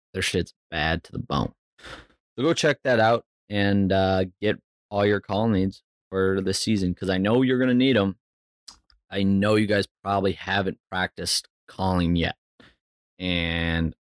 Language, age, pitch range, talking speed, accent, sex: English, 20-39, 95-115 Hz, 165 wpm, American, male